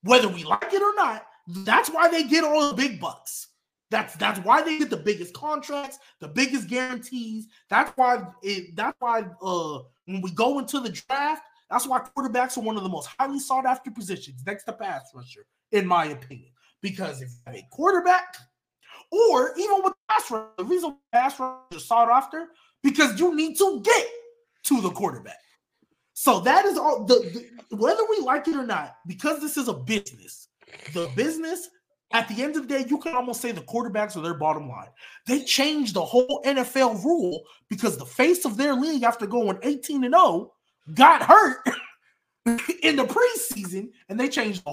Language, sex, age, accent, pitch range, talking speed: English, male, 20-39, American, 205-300 Hz, 195 wpm